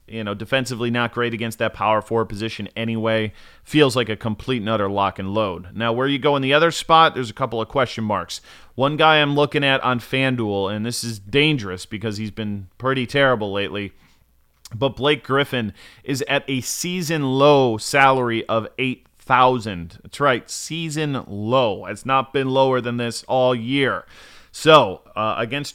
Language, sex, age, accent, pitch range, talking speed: English, male, 30-49, American, 110-135 Hz, 180 wpm